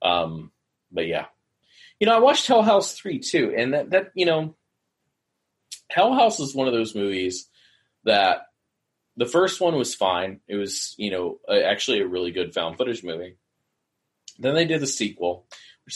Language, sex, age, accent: English, male, 30-49, American